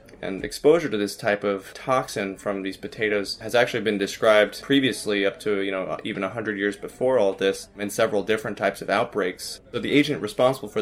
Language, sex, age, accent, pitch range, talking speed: English, male, 20-39, American, 100-110 Hz, 200 wpm